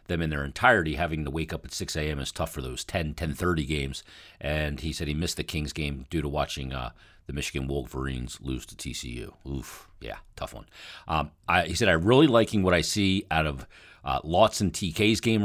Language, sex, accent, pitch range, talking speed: English, male, American, 75-100 Hz, 220 wpm